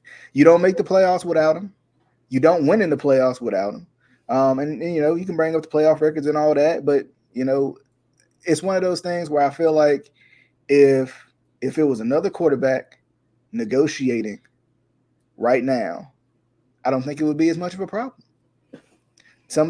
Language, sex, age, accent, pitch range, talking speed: English, male, 20-39, American, 130-200 Hz, 190 wpm